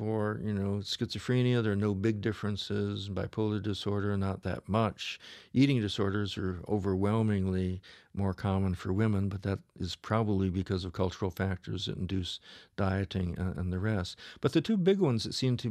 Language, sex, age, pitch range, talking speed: English, male, 50-69, 100-120 Hz, 170 wpm